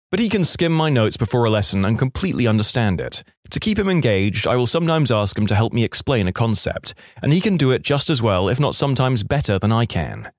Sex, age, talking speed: male, 20-39, 250 wpm